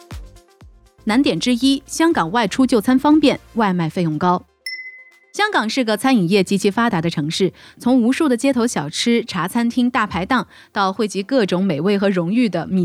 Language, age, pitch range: Chinese, 30-49, 180-270 Hz